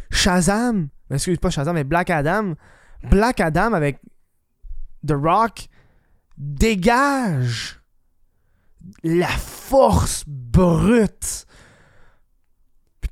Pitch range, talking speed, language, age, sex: 140-200 Hz, 80 wpm, French, 20-39, male